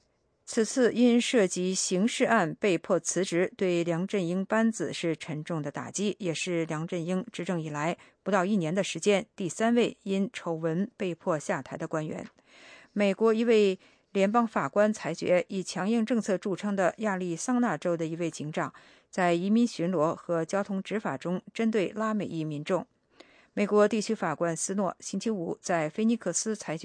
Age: 50-69